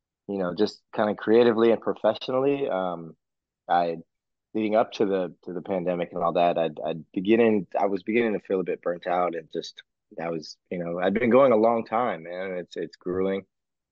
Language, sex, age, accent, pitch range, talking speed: English, male, 20-39, American, 90-100 Hz, 205 wpm